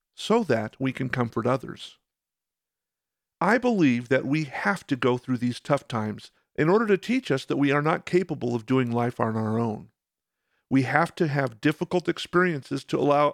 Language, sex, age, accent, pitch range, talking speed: English, male, 50-69, American, 125-175 Hz, 185 wpm